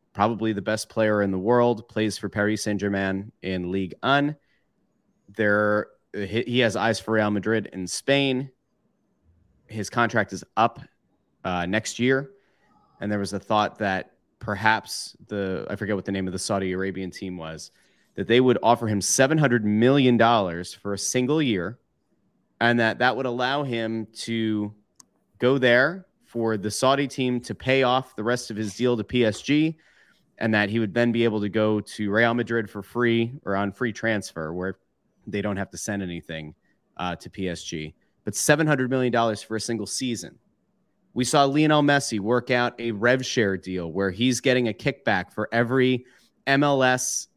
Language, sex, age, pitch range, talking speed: English, male, 30-49, 100-130 Hz, 170 wpm